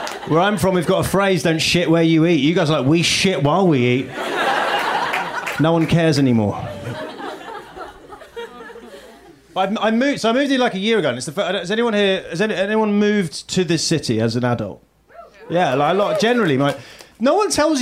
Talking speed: 210 wpm